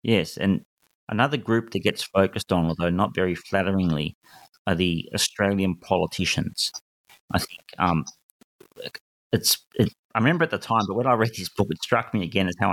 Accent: Australian